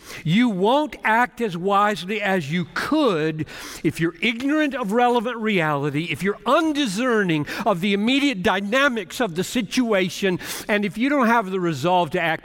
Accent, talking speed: American, 160 wpm